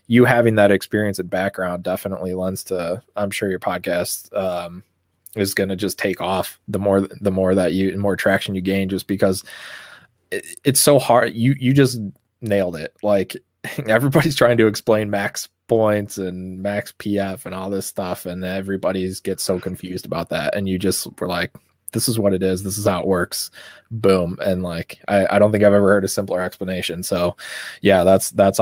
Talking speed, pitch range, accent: 195 wpm, 95-105 Hz, American